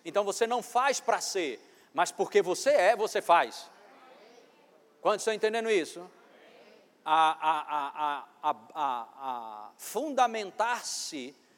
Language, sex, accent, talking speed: Portuguese, male, Brazilian, 90 wpm